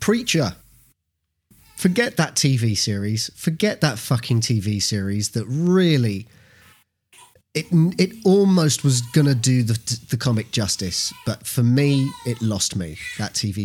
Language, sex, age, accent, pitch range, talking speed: English, male, 30-49, British, 105-135 Hz, 135 wpm